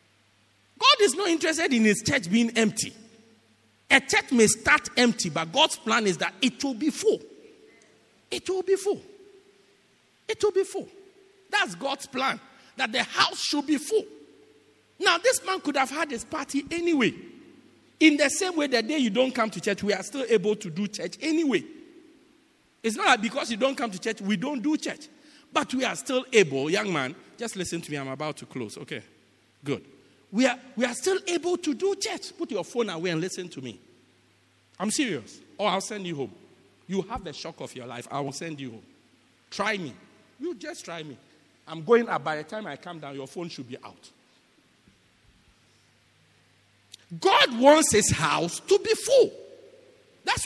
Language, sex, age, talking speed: English, male, 50-69, 195 wpm